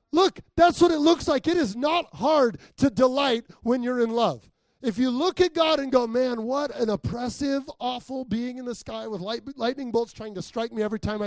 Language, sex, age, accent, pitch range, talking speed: English, male, 30-49, American, 210-300 Hz, 220 wpm